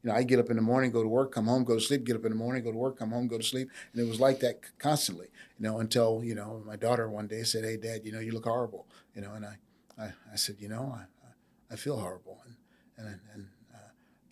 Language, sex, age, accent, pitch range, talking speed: English, male, 50-69, American, 110-125 Hz, 290 wpm